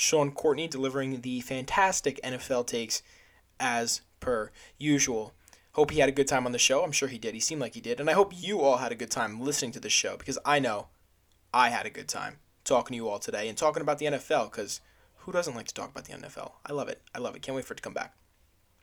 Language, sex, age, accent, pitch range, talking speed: English, male, 20-39, American, 125-155 Hz, 260 wpm